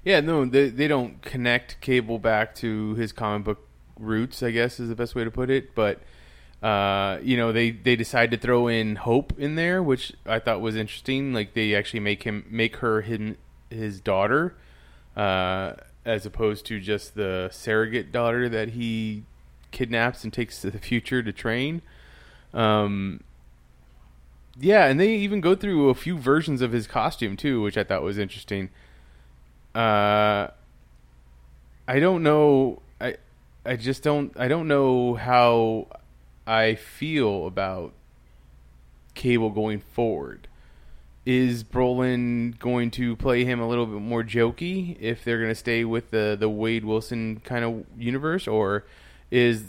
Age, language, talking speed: 20-39, English, 160 wpm